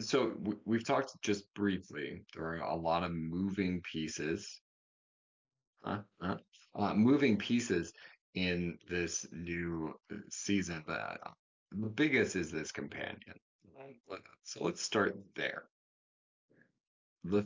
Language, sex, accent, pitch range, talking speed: English, male, American, 80-100 Hz, 105 wpm